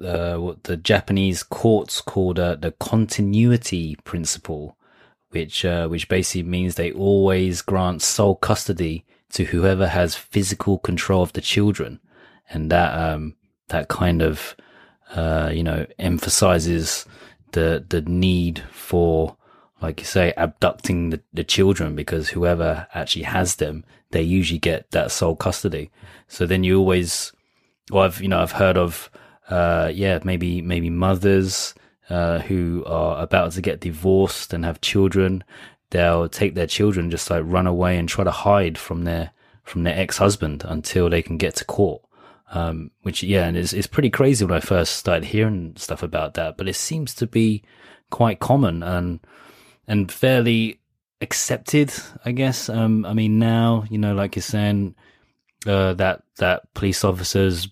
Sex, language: male, English